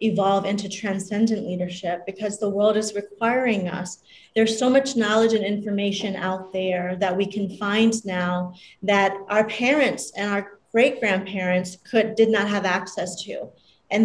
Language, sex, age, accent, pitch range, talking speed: English, female, 30-49, American, 195-225 Hz, 155 wpm